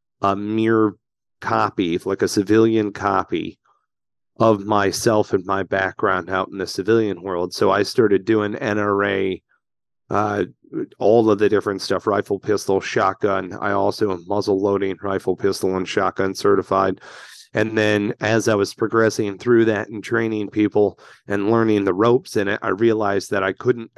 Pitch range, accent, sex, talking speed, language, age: 100-115 Hz, American, male, 155 wpm, English, 30-49